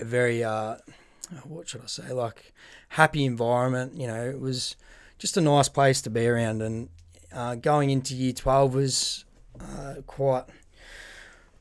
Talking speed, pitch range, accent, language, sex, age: 145 wpm, 120-140 Hz, Australian, English, male, 20-39